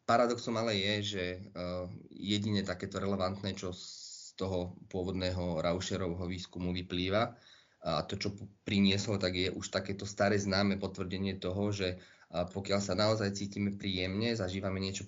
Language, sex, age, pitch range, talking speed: Slovak, male, 30-49, 90-100 Hz, 135 wpm